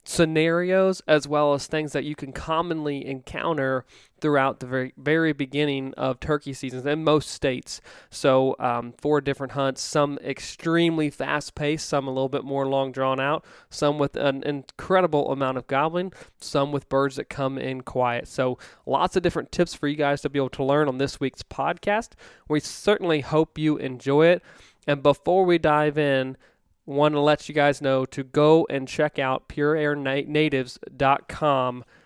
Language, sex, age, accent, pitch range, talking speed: English, male, 20-39, American, 130-150 Hz, 170 wpm